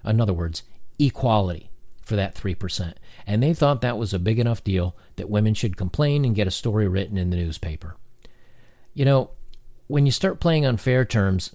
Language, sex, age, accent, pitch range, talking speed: English, male, 50-69, American, 95-130 Hz, 190 wpm